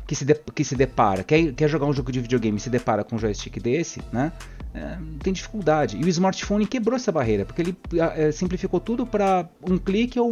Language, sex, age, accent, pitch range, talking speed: Portuguese, male, 30-49, Brazilian, 115-165 Hz, 200 wpm